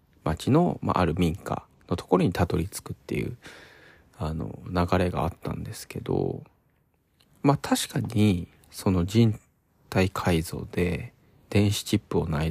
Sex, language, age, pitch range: male, Japanese, 40-59, 85-120 Hz